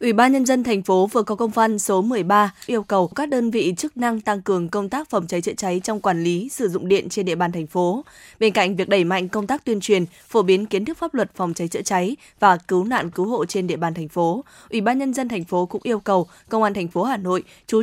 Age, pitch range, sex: 20-39, 185-230 Hz, female